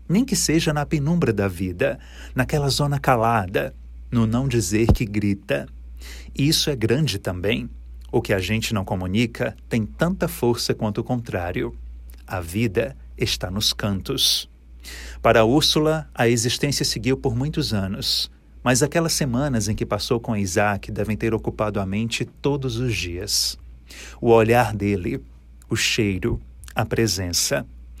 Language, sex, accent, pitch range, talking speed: Portuguese, male, Brazilian, 90-125 Hz, 145 wpm